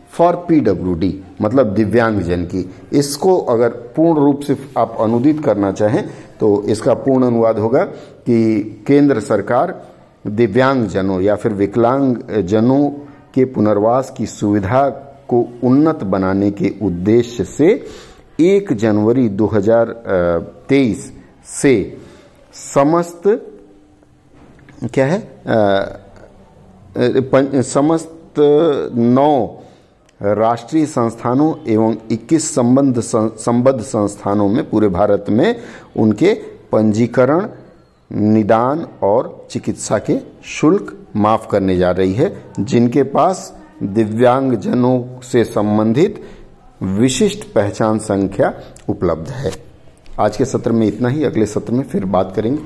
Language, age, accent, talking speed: Hindi, 50-69, native, 110 wpm